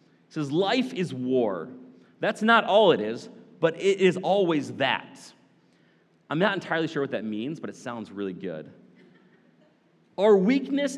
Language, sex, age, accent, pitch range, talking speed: English, male, 30-49, American, 135-205 Hz, 155 wpm